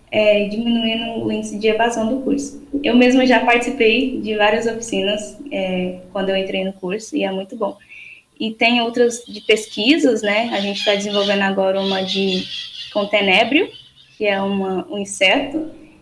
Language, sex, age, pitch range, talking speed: Portuguese, female, 10-29, 205-255 Hz, 170 wpm